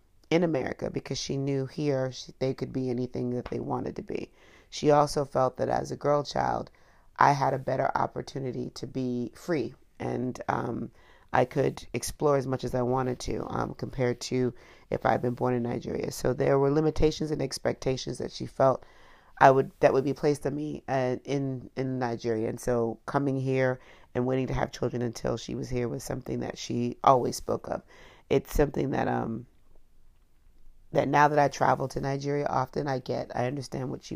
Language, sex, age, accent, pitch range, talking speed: English, female, 40-59, American, 120-140 Hz, 195 wpm